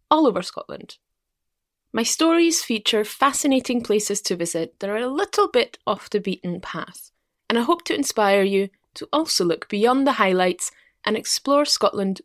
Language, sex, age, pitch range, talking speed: English, female, 20-39, 190-275 Hz, 165 wpm